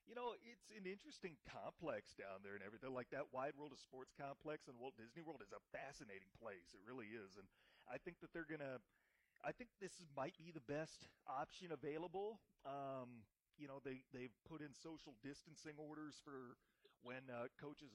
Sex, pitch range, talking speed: male, 120-155 Hz, 190 wpm